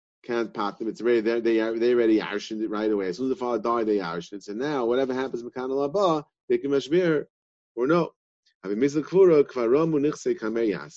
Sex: male